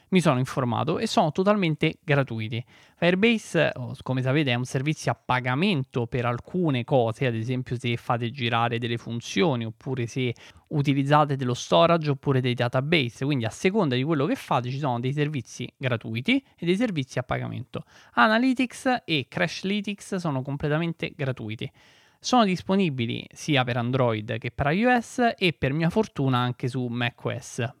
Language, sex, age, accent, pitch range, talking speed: Italian, male, 20-39, native, 125-160 Hz, 155 wpm